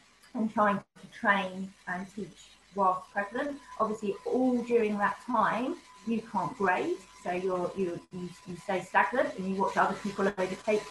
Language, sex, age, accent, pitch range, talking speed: English, female, 20-39, British, 195-250 Hz, 155 wpm